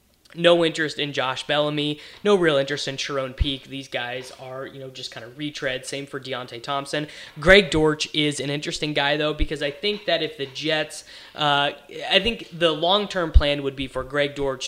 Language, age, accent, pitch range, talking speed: English, 20-39, American, 135-165 Hz, 200 wpm